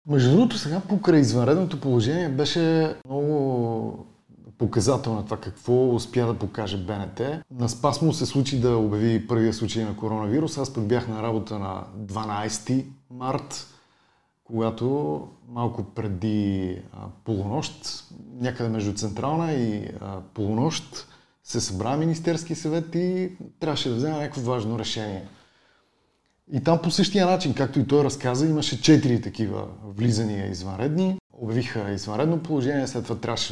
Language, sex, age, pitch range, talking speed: Bulgarian, male, 30-49, 110-145 Hz, 130 wpm